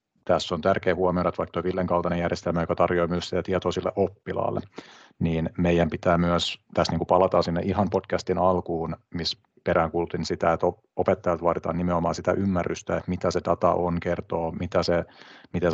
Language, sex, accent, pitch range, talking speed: Finnish, male, native, 85-90 Hz, 175 wpm